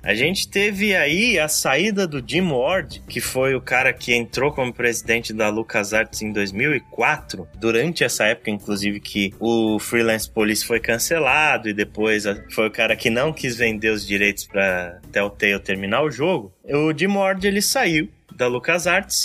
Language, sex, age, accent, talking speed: Portuguese, male, 20-39, Brazilian, 170 wpm